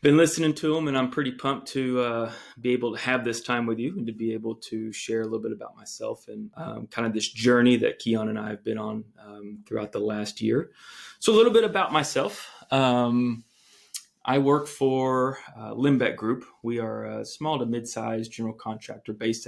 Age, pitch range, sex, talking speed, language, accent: 30-49, 110-125 Hz, male, 215 wpm, English, American